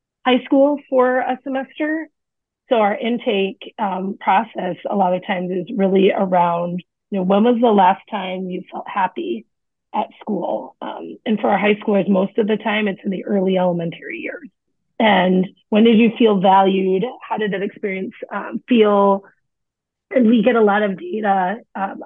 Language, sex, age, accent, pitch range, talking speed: English, female, 30-49, American, 195-230 Hz, 175 wpm